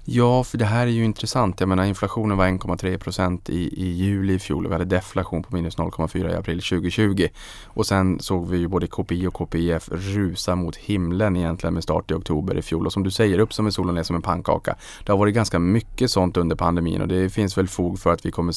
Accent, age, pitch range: Norwegian, 20-39, 85-100 Hz